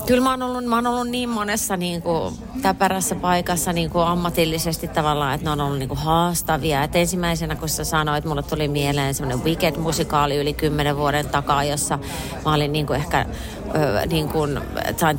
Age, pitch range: 30-49, 150-195 Hz